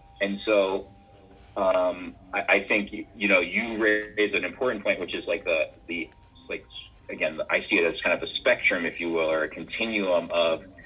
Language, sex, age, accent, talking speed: English, male, 40-59, American, 200 wpm